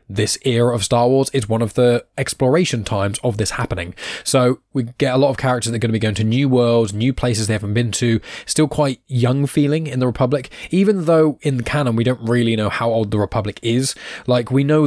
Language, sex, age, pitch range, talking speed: English, male, 10-29, 105-130 Hz, 240 wpm